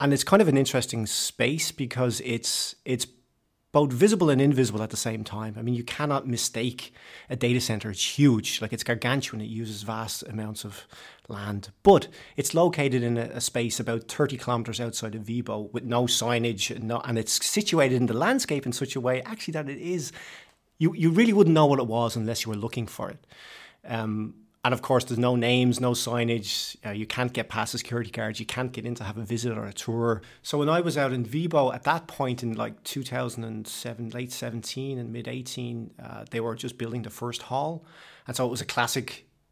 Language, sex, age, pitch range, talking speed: Danish, male, 30-49, 110-130 Hz, 215 wpm